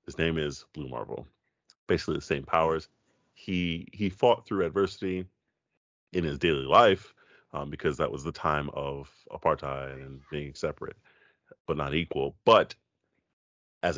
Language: English